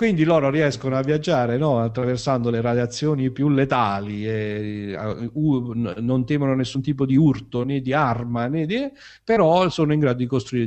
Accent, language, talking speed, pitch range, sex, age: native, Italian, 170 wpm, 100-135 Hz, male, 50-69